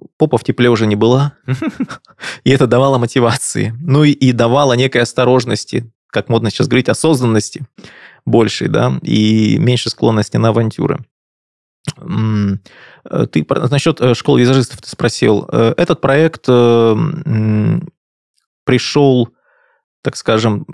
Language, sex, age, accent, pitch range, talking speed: Russian, male, 20-39, native, 110-140 Hz, 115 wpm